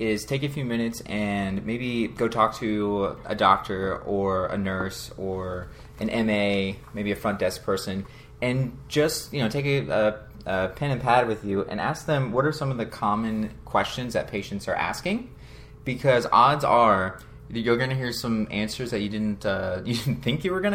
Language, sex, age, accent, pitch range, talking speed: English, male, 20-39, American, 100-120 Hz, 200 wpm